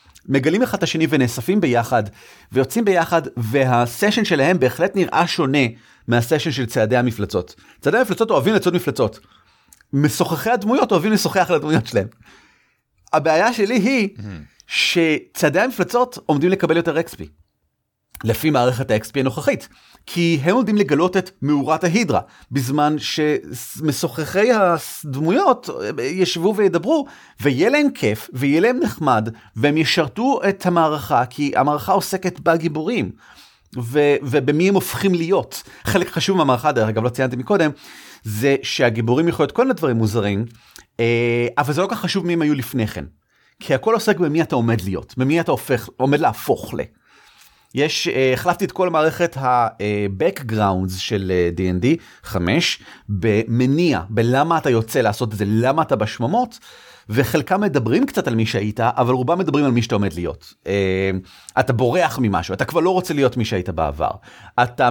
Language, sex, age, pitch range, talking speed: Hebrew, male, 40-59, 120-175 Hz, 150 wpm